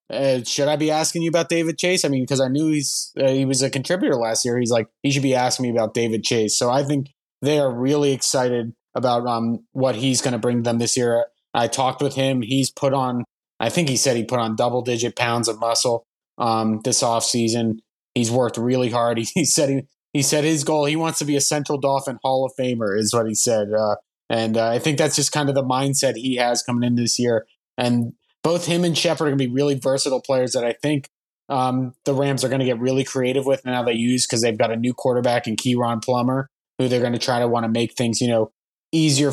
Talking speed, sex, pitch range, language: 250 wpm, male, 120-140 Hz, English